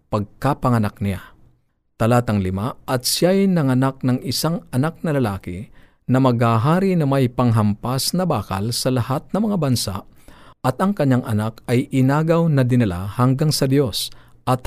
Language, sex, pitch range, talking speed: Filipino, male, 105-135 Hz, 145 wpm